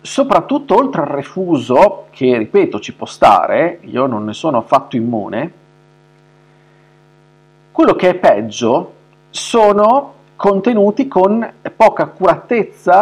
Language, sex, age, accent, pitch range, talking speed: Italian, male, 50-69, native, 140-160 Hz, 110 wpm